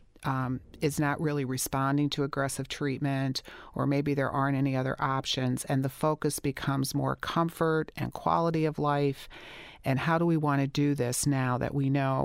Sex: female